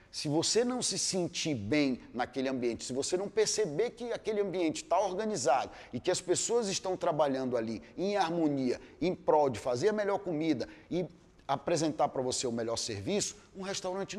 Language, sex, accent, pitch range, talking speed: Portuguese, male, Brazilian, 135-195 Hz, 180 wpm